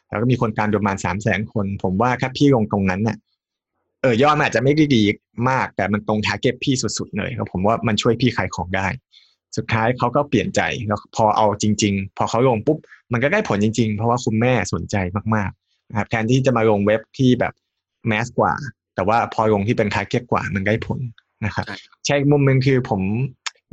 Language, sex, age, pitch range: Thai, male, 20-39, 105-125 Hz